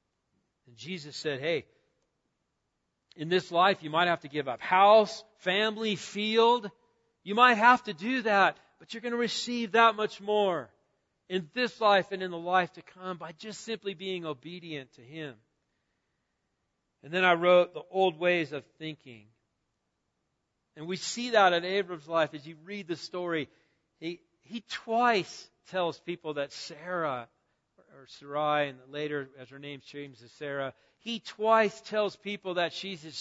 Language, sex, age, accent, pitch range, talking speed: English, male, 40-59, American, 150-195 Hz, 165 wpm